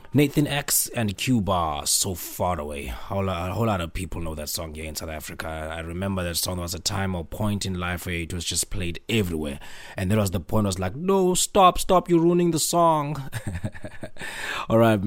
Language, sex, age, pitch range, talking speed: English, male, 20-39, 90-110 Hz, 220 wpm